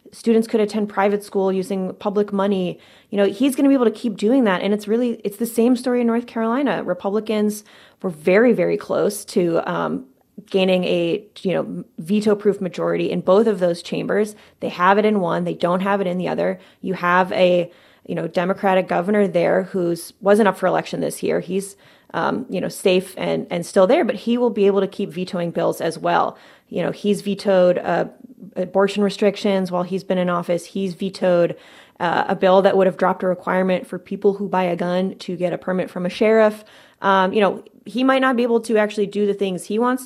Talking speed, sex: 215 wpm, female